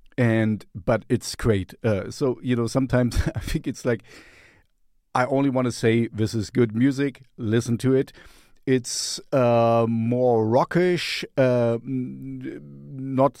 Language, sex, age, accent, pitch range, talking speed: English, male, 50-69, German, 105-130 Hz, 140 wpm